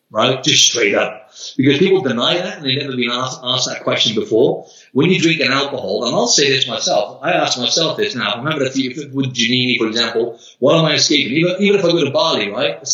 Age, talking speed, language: 30-49, 240 wpm, English